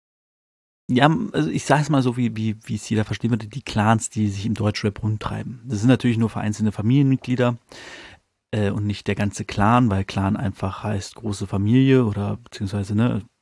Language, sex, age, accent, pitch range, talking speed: German, male, 30-49, German, 100-120 Hz, 185 wpm